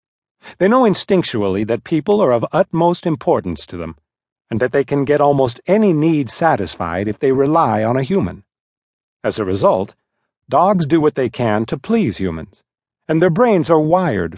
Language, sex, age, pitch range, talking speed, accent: English, male, 50-69, 110-165 Hz, 175 wpm, American